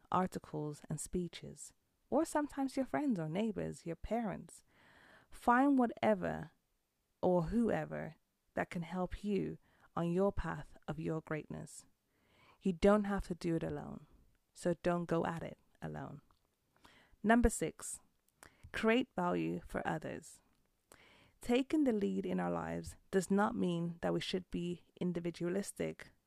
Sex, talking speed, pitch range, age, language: female, 130 wpm, 165-210 Hz, 30-49, English